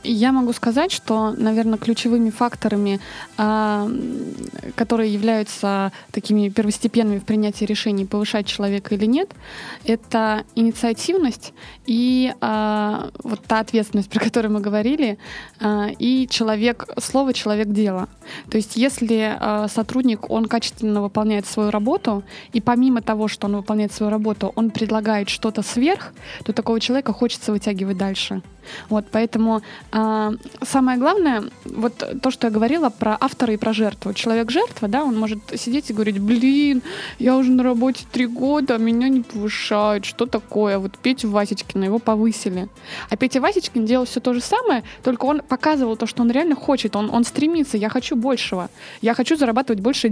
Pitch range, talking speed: 210-250 Hz, 145 wpm